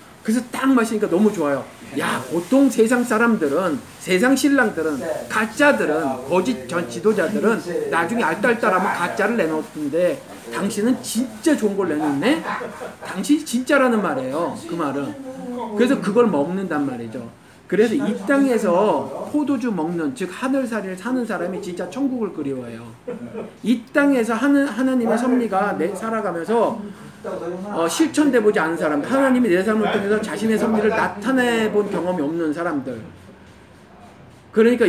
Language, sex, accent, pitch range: Korean, male, native, 175-255 Hz